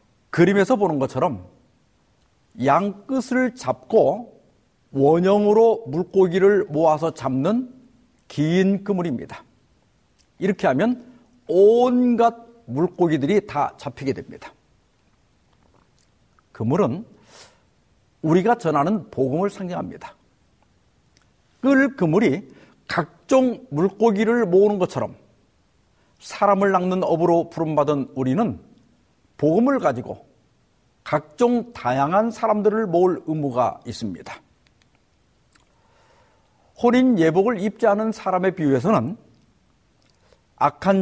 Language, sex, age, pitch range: Korean, male, 50-69, 155-215 Hz